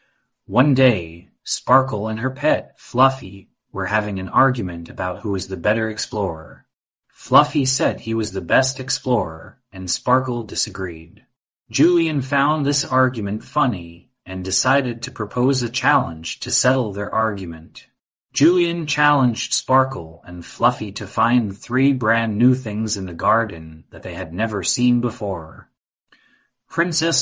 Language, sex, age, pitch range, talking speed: English, male, 30-49, 95-130 Hz, 140 wpm